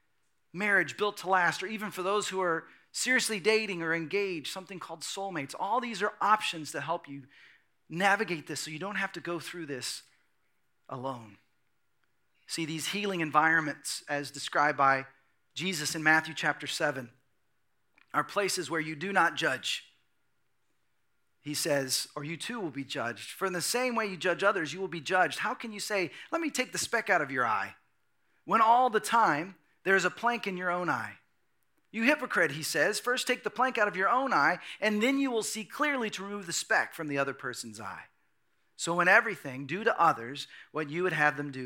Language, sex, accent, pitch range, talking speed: English, male, American, 145-195 Hz, 200 wpm